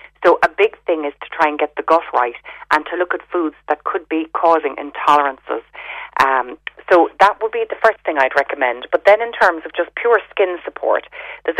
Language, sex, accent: English, female, Irish